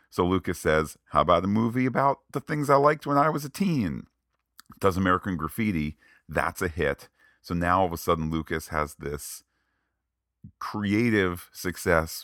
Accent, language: American, English